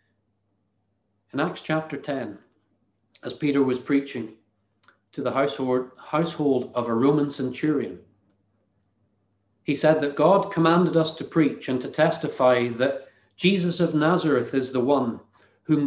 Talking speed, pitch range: 130 wpm, 110-140 Hz